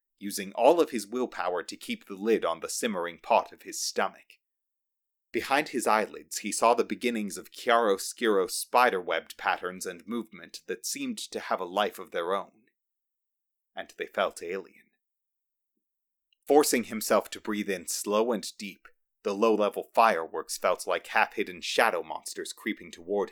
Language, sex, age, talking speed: English, male, 30-49, 155 wpm